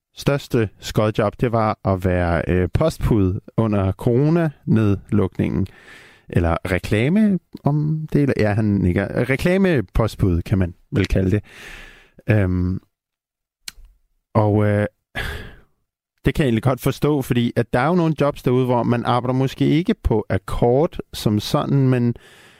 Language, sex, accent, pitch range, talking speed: Danish, male, native, 95-130 Hz, 135 wpm